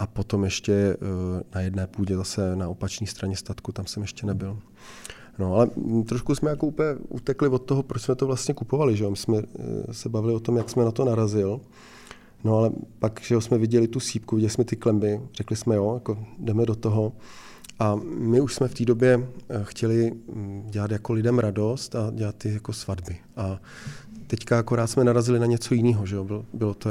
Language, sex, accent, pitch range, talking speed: Czech, male, native, 105-115 Hz, 200 wpm